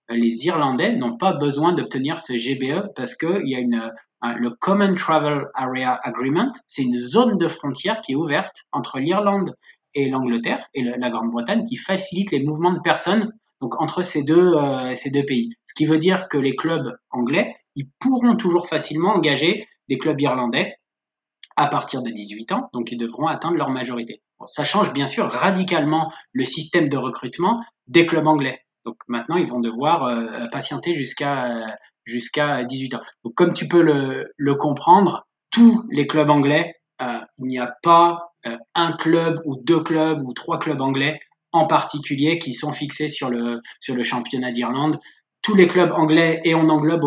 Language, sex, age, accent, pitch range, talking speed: French, male, 20-39, French, 125-165 Hz, 180 wpm